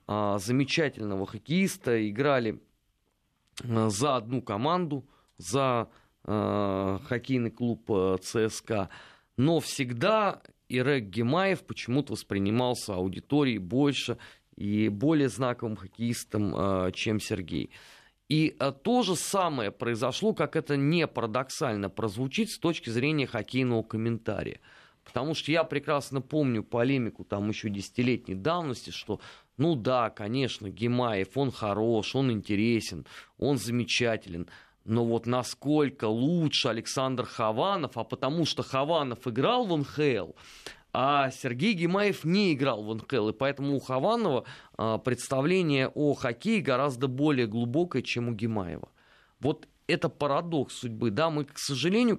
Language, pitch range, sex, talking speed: Russian, 110-145 Hz, male, 115 wpm